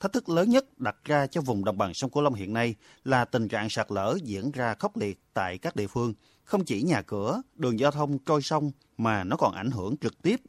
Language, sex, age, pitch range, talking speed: Vietnamese, male, 30-49, 105-140 Hz, 250 wpm